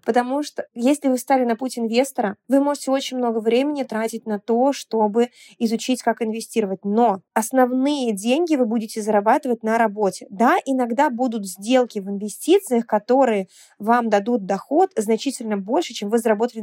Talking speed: 155 wpm